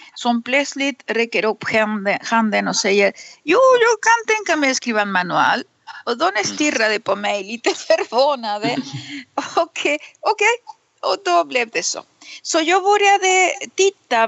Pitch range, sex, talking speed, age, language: 215-315 Hz, female, 140 wpm, 50-69, Swedish